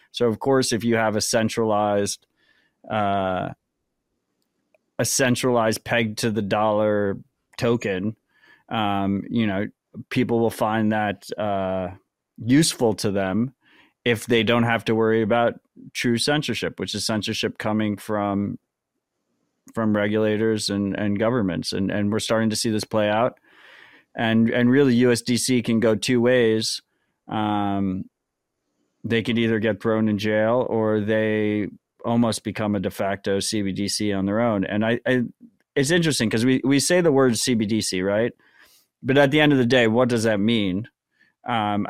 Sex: male